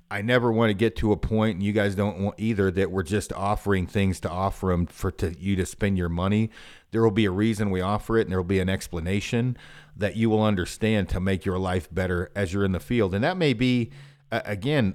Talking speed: 245 wpm